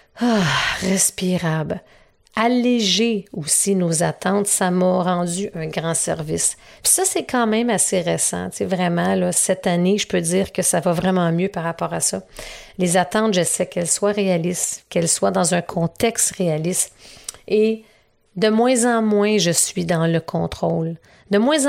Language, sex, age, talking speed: French, female, 40-59, 170 wpm